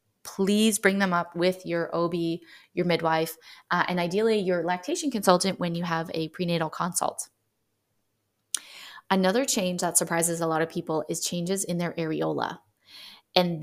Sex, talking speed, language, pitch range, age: female, 155 wpm, English, 170-190 Hz, 20-39